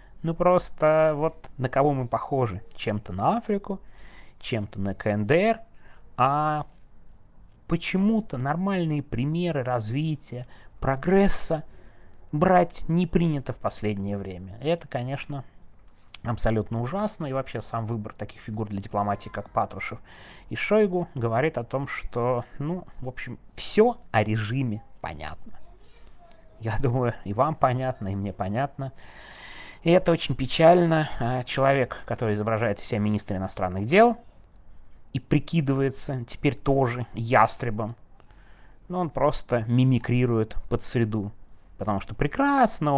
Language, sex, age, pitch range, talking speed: Russian, male, 30-49, 105-155 Hz, 120 wpm